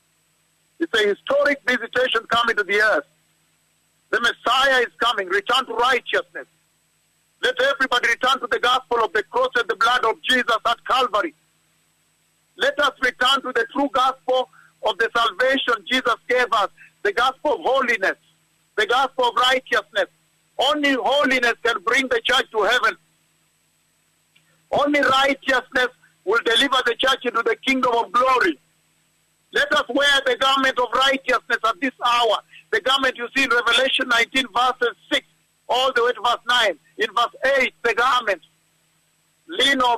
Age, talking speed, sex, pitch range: 50-69, 155 wpm, male, 235-270 Hz